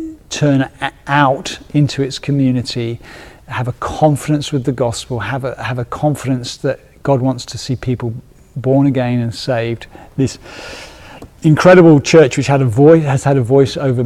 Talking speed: 160 wpm